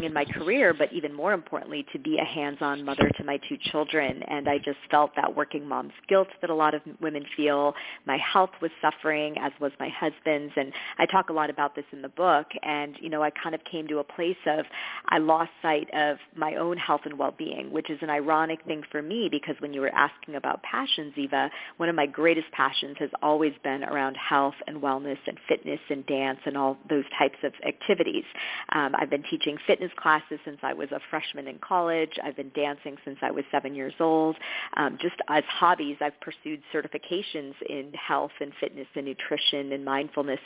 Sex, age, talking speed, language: female, 40-59, 210 wpm, English